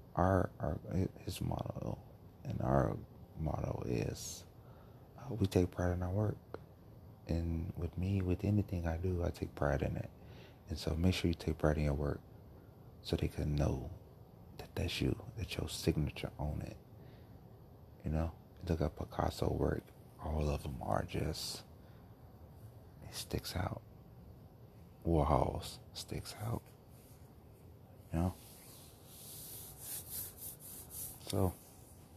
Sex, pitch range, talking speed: male, 80-105 Hz, 130 wpm